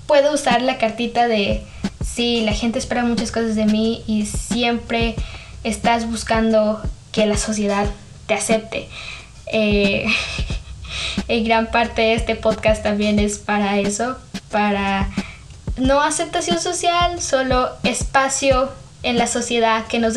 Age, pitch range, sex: 10-29, 210-240 Hz, female